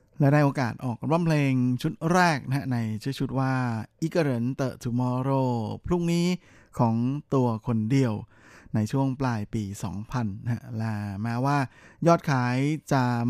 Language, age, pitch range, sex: Thai, 20-39, 115-140 Hz, male